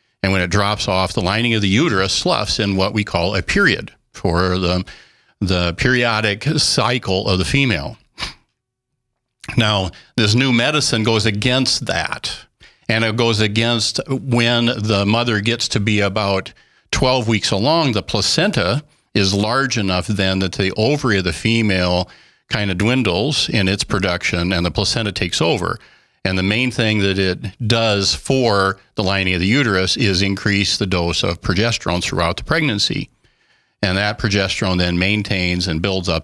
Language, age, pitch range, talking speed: English, 50-69, 95-115 Hz, 165 wpm